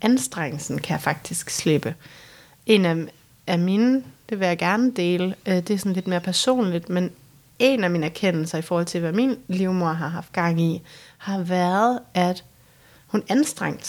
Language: Danish